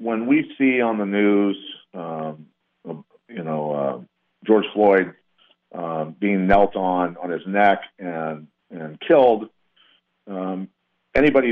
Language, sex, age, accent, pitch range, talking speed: English, male, 50-69, American, 100-120 Hz, 125 wpm